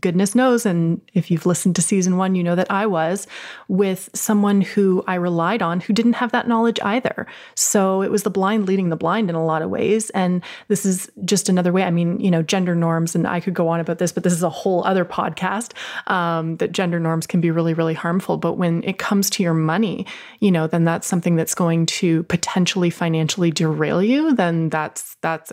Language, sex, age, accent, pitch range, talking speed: English, female, 20-39, American, 175-210 Hz, 225 wpm